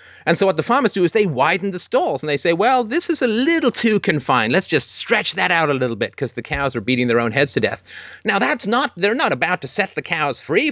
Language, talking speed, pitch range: English, 280 wpm, 135-200 Hz